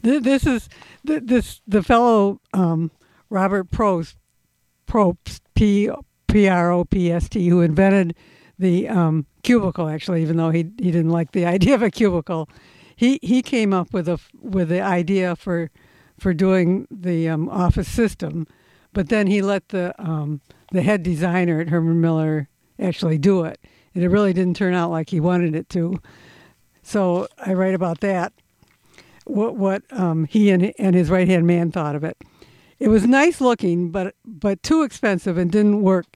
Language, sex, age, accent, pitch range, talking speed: English, female, 60-79, American, 170-205 Hz, 170 wpm